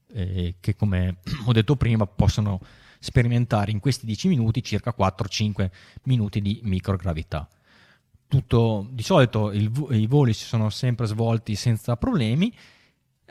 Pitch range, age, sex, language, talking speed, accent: 105-130 Hz, 20-39, male, Italian, 125 wpm, native